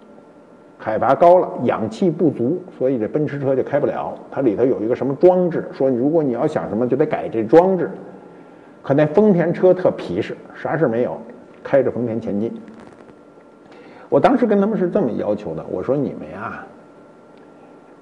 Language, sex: Chinese, male